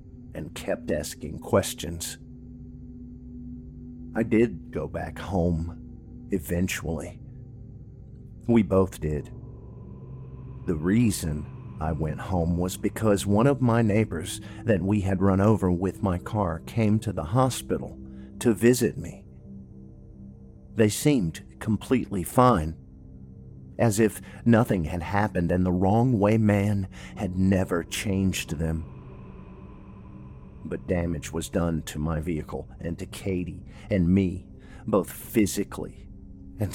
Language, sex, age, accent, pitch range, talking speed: English, male, 50-69, American, 85-110 Hz, 120 wpm